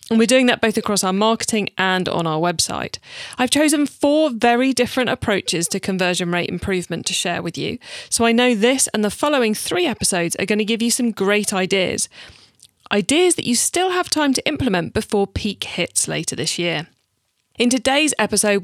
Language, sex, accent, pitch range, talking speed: English, female, British, 200-250 Hz, 195 wpm